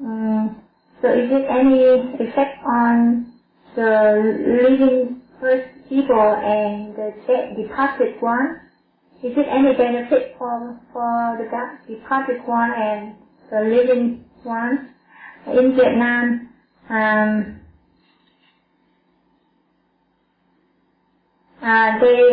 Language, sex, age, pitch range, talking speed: Vietnamese, female, 20-39, 225-260 Hz, 95 wpm